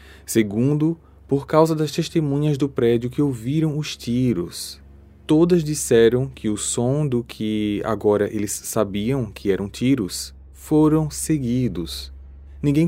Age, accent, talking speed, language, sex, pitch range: 20-39, Brazilian, 125 wpm, Portuguese, male, 100-140 Hz